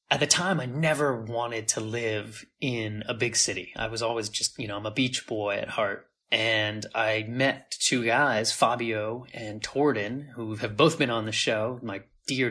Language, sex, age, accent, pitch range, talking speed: English, male, 30-49, American, 110-130 Hz, 195 wpm